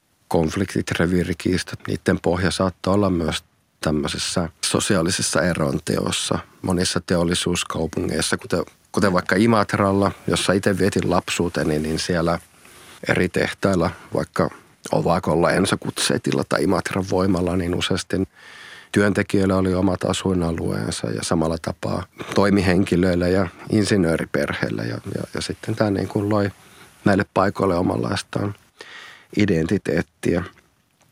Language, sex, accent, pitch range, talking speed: Finnish, male, native, 85-100 Hz, 105 wpm